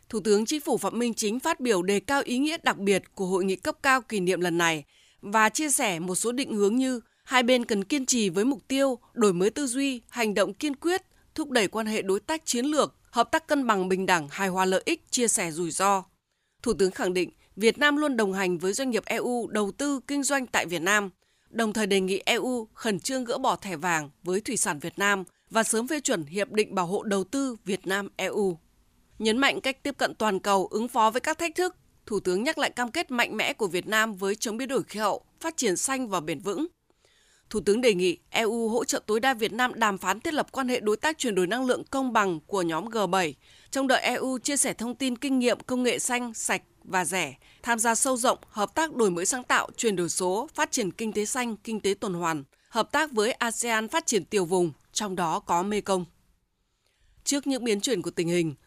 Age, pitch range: 20-39, 195-260 Hz